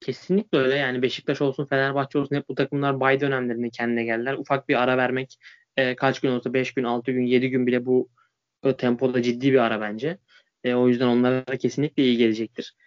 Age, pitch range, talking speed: 20-39, 125-145 Hz, 200 wpm